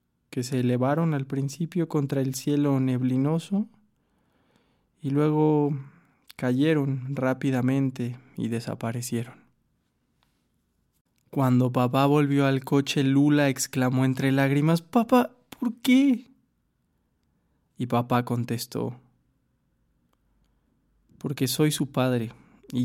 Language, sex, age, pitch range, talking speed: Spanish, male, 20-39, 125-155 Hz, 90 wpm